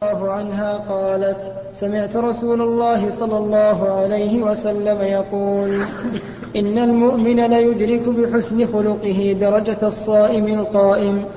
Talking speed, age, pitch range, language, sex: 95 wpm, 20-39, 200-230 Hz, Arabic, male